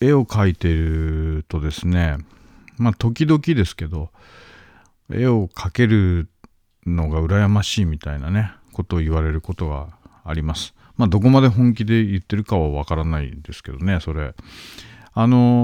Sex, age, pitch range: male, 50-69, 80-115 Hz